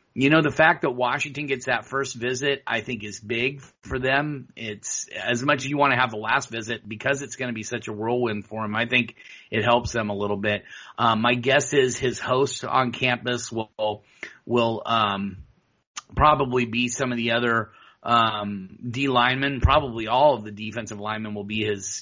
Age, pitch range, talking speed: 30-49, 110-125 Hz, 200 wpm